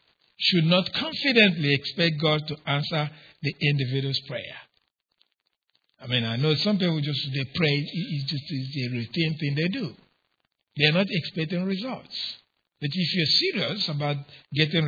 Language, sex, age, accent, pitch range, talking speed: English, male, 60-79, Nigerian, 140-175 Hz, 155 wpm